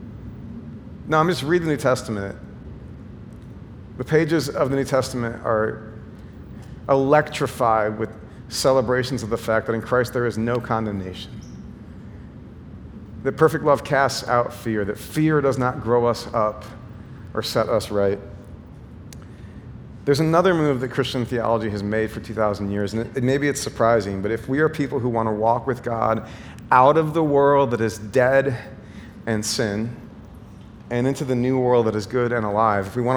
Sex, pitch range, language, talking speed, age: male, 110-130 Hz, English, 170 wpm, 40-59